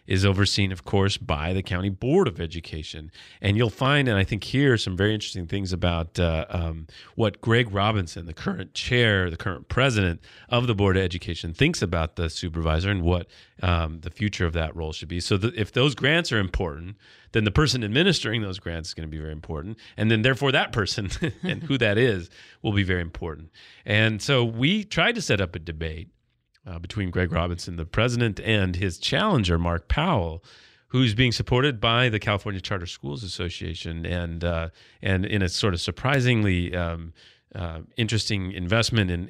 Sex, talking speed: male, 195 wpm